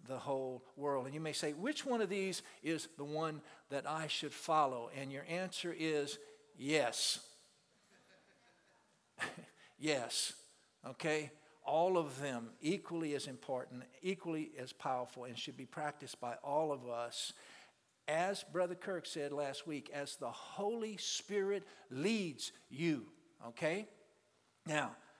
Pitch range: 140-180 Hz